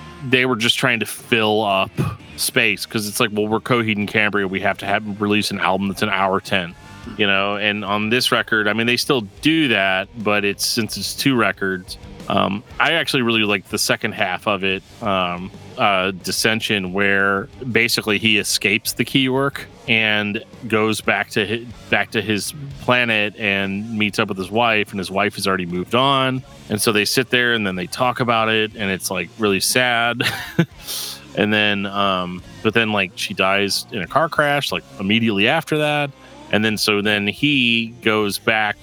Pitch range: 100-115 Hz